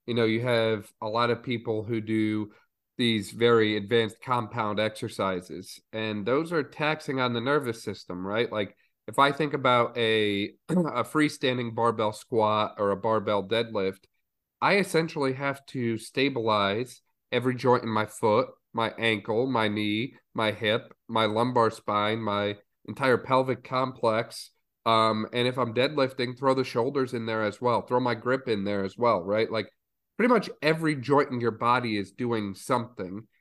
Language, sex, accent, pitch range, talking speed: English, male, American, 105-125 Hz, 165 wpm